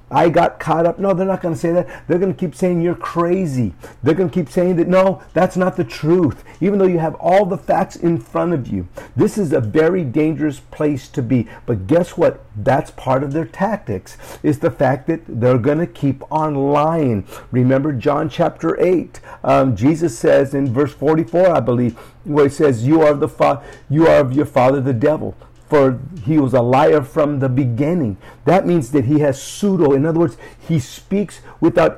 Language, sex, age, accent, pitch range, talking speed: English, male, 50-69, American, 135-175 Hz, 205 wpm